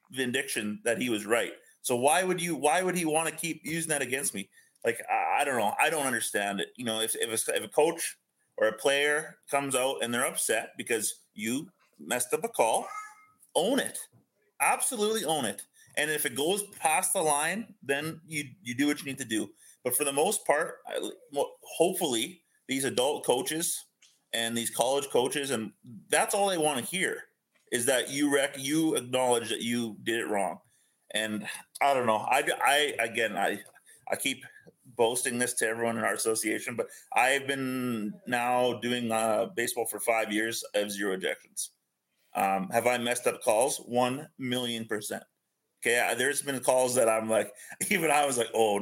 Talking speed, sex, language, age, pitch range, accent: 190 wpm, male, English, 30-49, 115-155 Hz, American